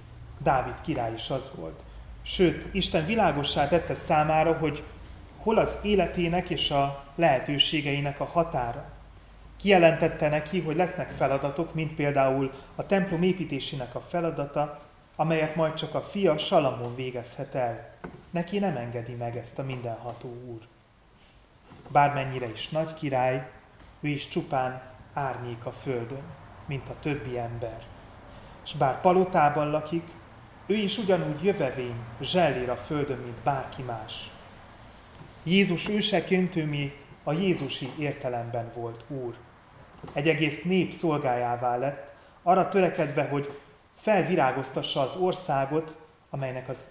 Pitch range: 120-160 Hz